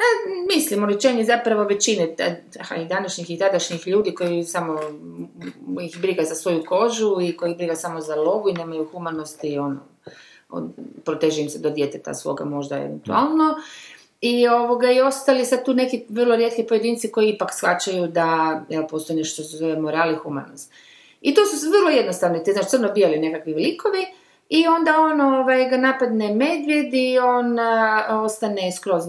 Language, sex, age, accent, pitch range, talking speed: Croatian, female, 30-49, native, 160-250 Hz, 165 wpm